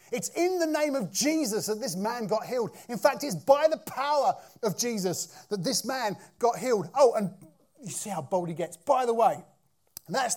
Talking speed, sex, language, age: 210 wpm, male, English, 30-49